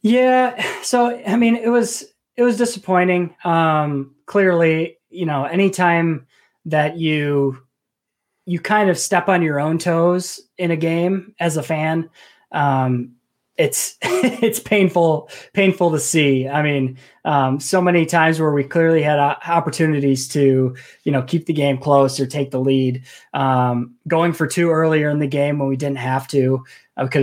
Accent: American